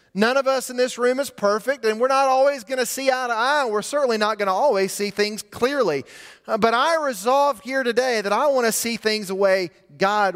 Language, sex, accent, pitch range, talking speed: English, male, American, 190-250 Hz, 245 wpm